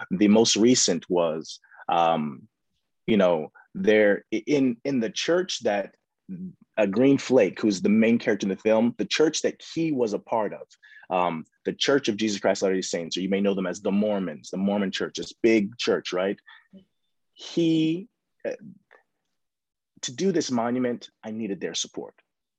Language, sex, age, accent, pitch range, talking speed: English, male, 30-49, American, 90-120 Hz, 175 wpm